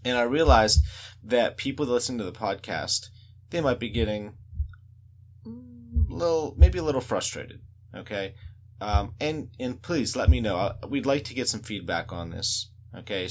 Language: English